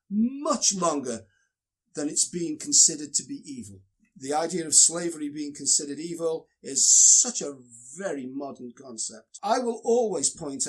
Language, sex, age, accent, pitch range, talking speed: English, male, 50-69, British, 125-175 Hz, 145 wpm